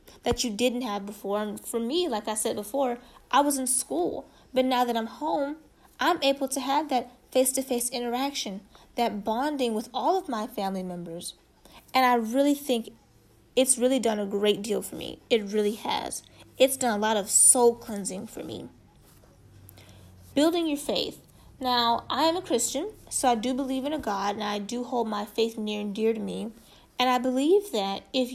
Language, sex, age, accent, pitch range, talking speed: English, female, 20-39, American, 220-275 Hz, 195 wpm